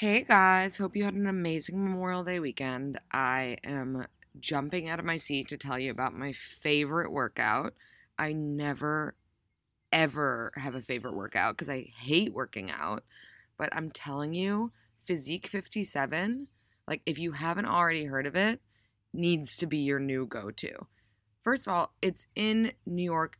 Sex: female